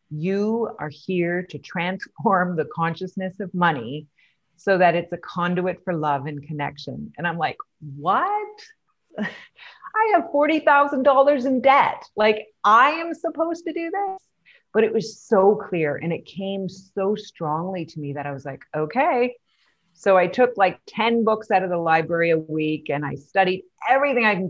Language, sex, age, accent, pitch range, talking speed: English, female, 40-59, American, 155-215 Hz, 175 wpm